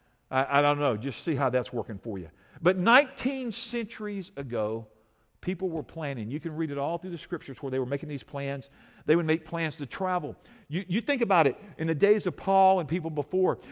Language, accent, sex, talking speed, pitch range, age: English, American, male, 220 wpm, 150-190 Hz, 50-69